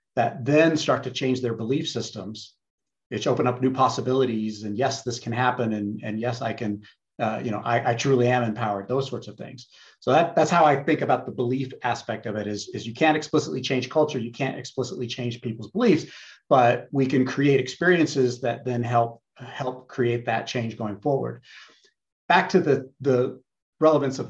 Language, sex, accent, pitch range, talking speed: English, male, American, 115-135 Hz, 195 wpm